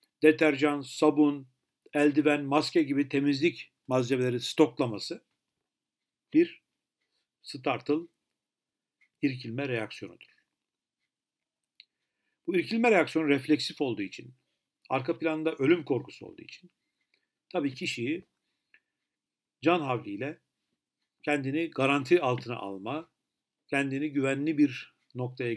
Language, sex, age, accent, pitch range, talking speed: Turkish, male, 60-79, native, 120-155 Hz, 85 wpm